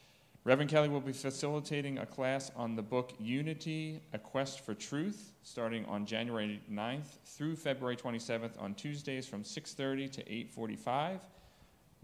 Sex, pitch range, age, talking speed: male, 110-140 Hz, 30-49, 140 wpm